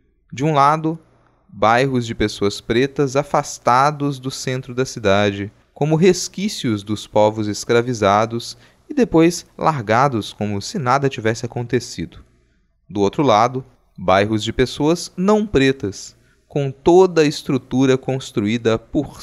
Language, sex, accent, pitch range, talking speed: Portuguese, male, Brazilian, 105-145 Hz, 120 wpm